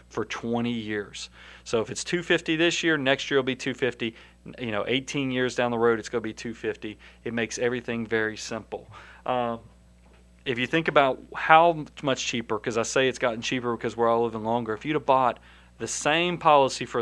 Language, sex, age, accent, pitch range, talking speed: English, male, 40-59, American, 110-135 Hz, 205 wpm